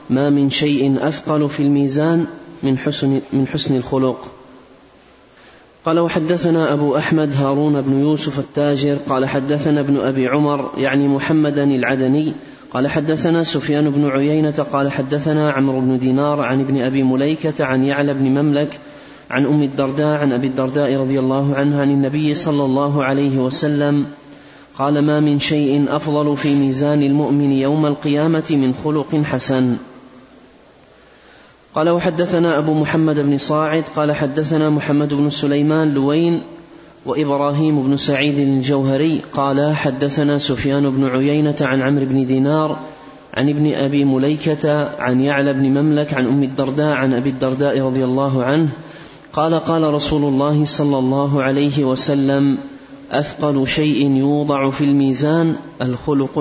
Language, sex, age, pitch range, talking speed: Arabic, male, 30-49, 135-150 Hz, 135 wpm